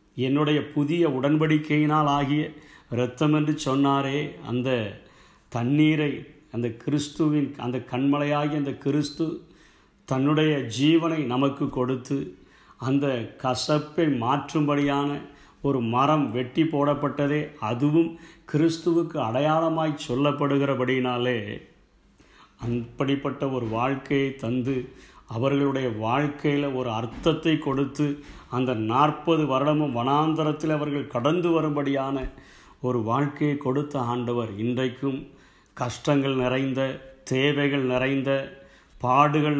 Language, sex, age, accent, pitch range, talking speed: Tamil, male, 50-69, native, 125-150 Hz, 85 wpm